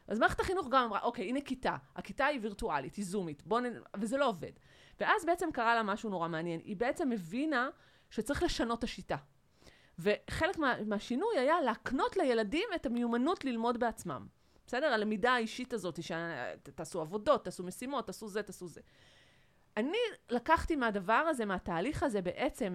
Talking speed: 160 wpm